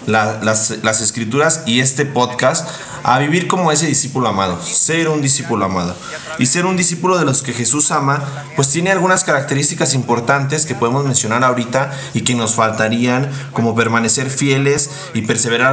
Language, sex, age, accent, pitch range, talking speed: Spanish, male, 30-49, Mexican, 115-145 Hz, 165 wpm